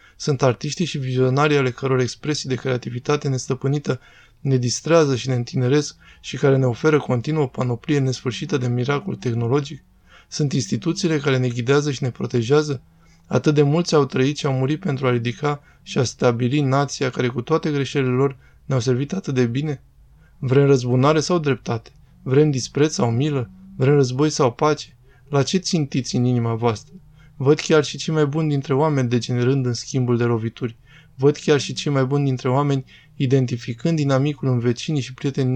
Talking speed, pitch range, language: 175 wpm, 120-145 Hz, Romanian